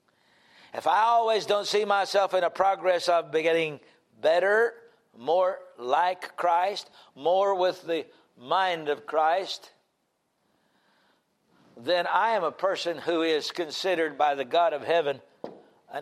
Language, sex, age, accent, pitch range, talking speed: English, male, 60-79, American, 160-220 Hz, 130 wpm